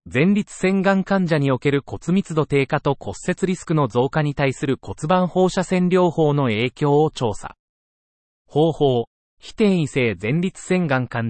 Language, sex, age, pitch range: Japanese, male, 40-59, 120-165 Hz